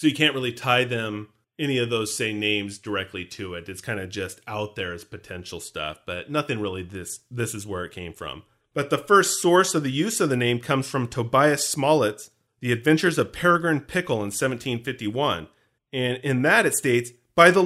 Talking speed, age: 205 wpm, 40-59